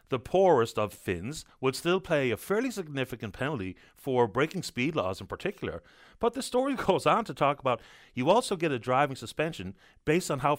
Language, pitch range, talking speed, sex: English, 115-170 Hz, 195 wpm, male